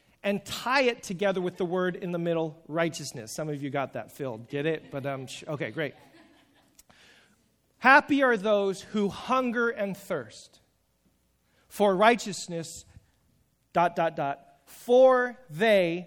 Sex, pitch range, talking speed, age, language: male, 170-215 Hz, 140 wpm, 40-59, English